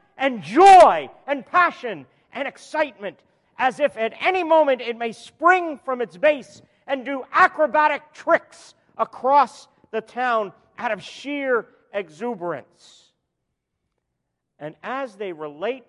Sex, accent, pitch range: male, American, 195-280 Hz